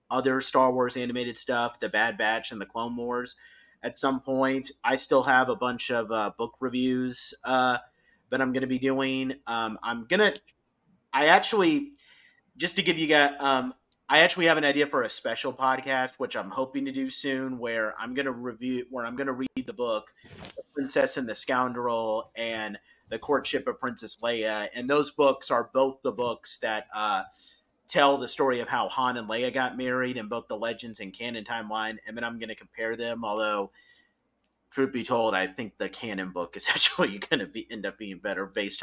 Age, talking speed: 30-49, 205 wpm